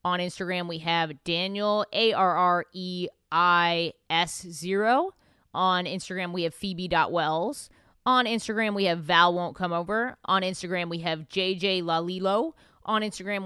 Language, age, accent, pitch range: English, 20-39, American, 180-225 Hz